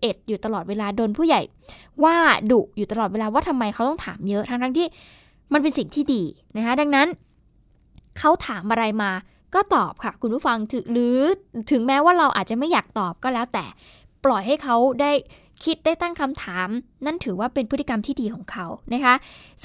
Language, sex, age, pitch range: Thai, female, 10-29, 225-300 Hz